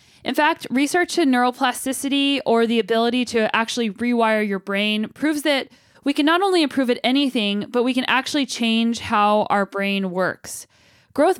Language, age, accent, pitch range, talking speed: English, 10-29, American, 210-265 Hz, 170 wpm